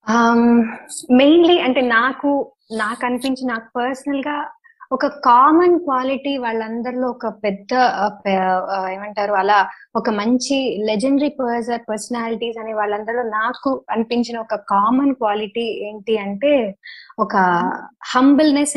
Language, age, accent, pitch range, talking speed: Telugu, 20-39, native, 210-270 Hz, 100 wpm